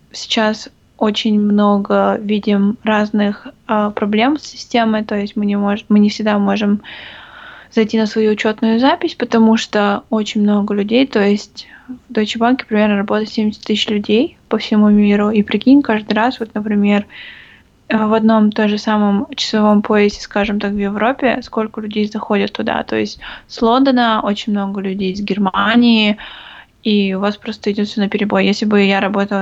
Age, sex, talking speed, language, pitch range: 20-39, female, 165 wpm, Russian, 205-230 Hz